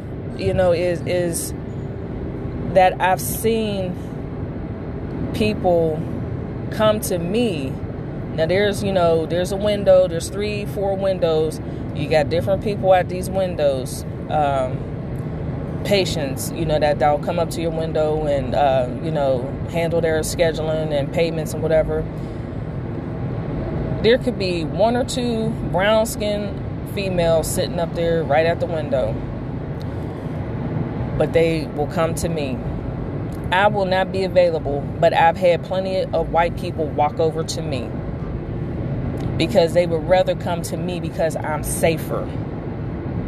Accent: American